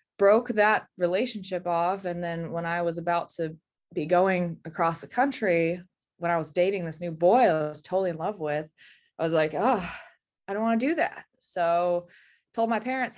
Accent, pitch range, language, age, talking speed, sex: American, 155-195 Hz, English, 20-39, 190 wpm, female